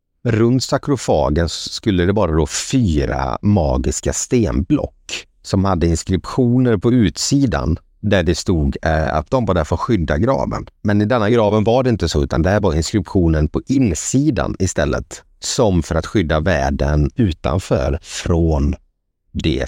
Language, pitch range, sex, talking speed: Swedish, 75-110 Hz, male, 150 wpm